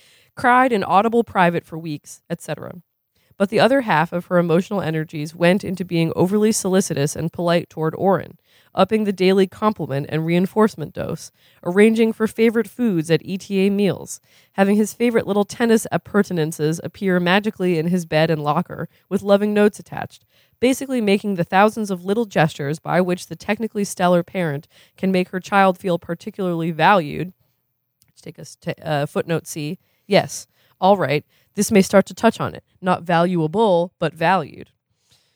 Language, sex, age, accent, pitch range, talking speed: English, female, 20-39, American, 160-210 Hz, 160 wpm